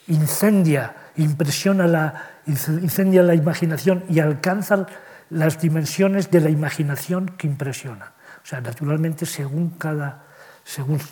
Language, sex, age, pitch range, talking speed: Spanish, male, 40-59, 140-165 Hz, 115 wpm